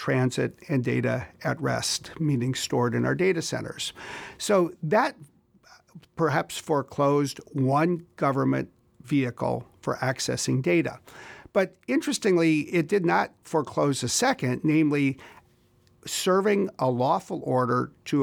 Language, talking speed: English, 115 wpm